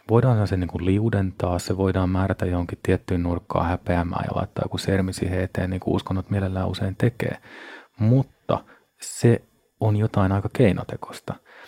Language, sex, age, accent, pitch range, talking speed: Finnish, male, 30-49, native, 90-105 Hz, 150 wpm